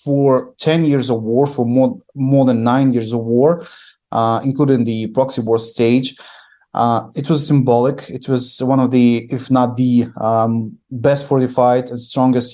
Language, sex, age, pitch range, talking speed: English, male, 20-39, 115-135 Hz, 170 wpm